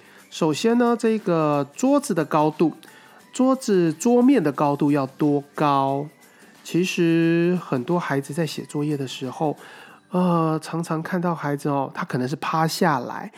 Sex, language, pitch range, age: male, Chinese, 140-175 Hz, 30-49